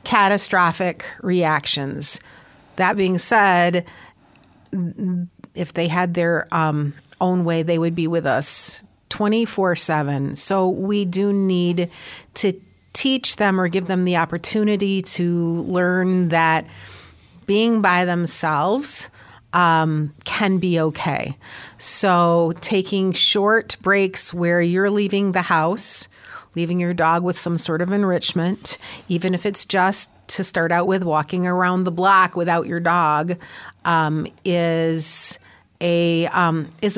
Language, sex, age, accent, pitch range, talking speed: English, female, 40-59, American, 170-200 Hz, 125 wpm